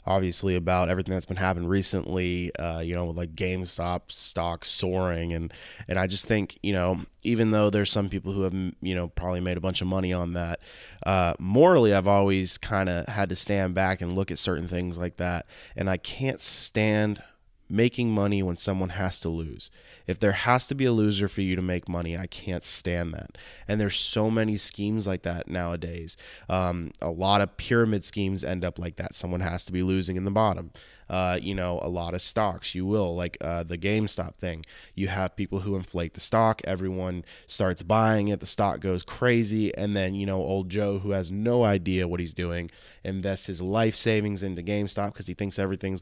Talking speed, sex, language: 210 wpm, male, English